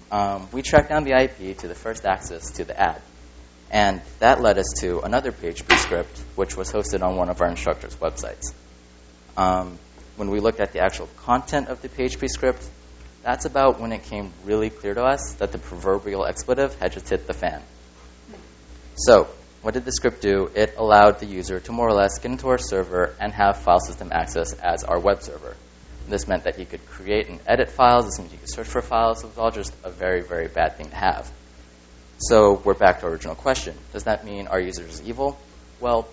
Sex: male